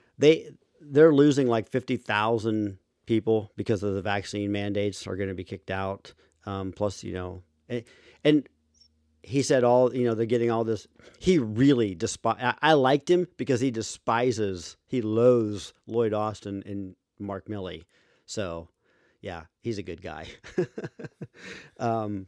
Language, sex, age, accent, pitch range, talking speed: English, male, 40-59, American, 100-120 Hz, 150 wpm